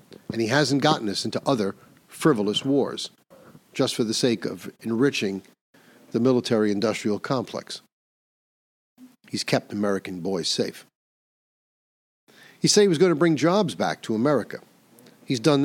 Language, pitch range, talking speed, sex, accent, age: English, 110-170 Hz, 140 wpm, male, American, 50-69